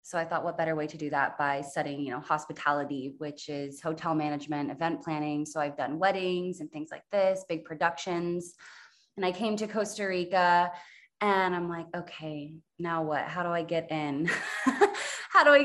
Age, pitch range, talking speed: 20-39, 160-195 Hz, 190 wpm